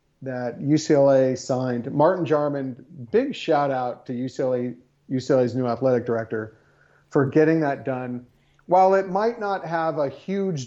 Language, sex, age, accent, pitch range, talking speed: English, male, 40-59, American, 130-165 Hz, 140 wpm